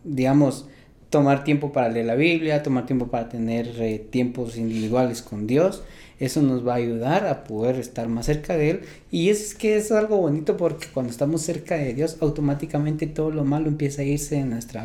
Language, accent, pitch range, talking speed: Spanish, Mexican, 120-160 Hz, 200 wpm